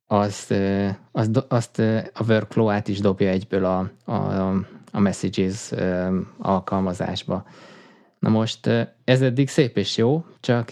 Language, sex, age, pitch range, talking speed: Hungarian, male, 20-39, 100-115 Hz, 110 wpm